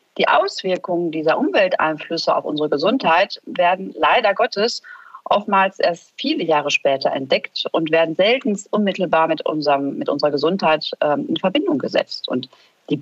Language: German